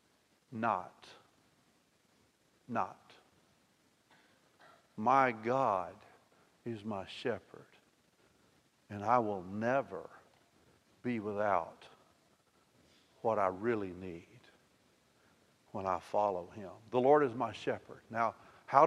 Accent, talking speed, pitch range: American, 90 wpm, 110-130 Hz